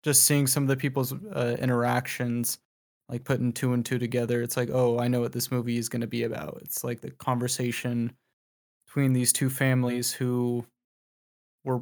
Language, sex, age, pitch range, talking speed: English, male, 20-39, 125-140 Hz, 190 wpm